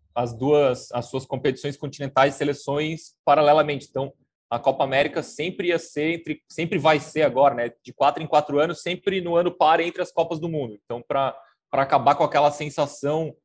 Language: Portuguese